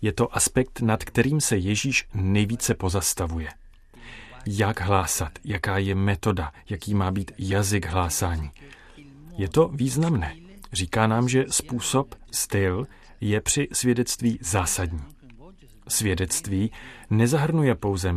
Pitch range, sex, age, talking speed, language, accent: 90-120 Hz, male, 40-59, 110 wpm, Czech, native